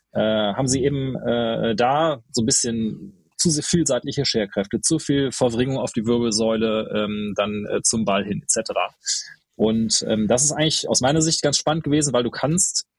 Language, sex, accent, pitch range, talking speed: German, male, German, 110-145 Hz, 185 wpm